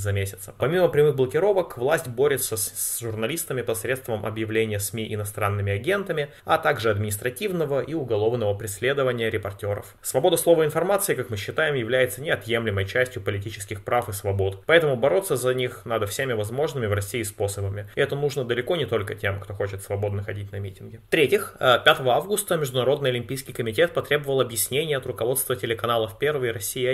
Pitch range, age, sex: 105-130 Hz, 20-39, male